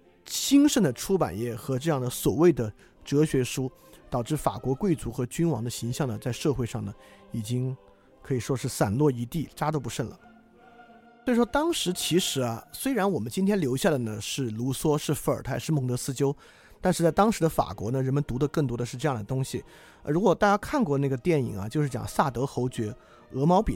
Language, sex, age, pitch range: Chinese, male, 20-39, 120-160 Hz